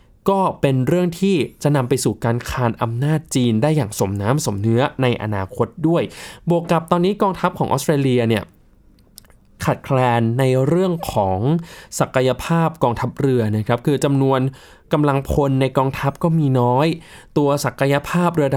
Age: 20-39